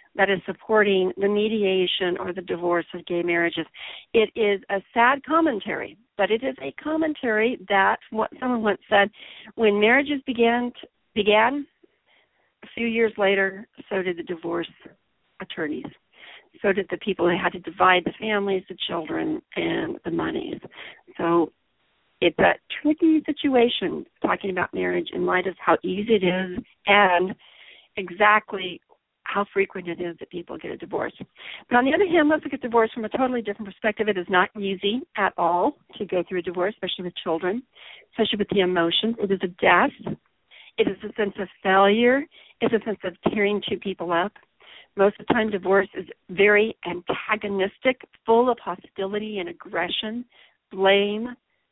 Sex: female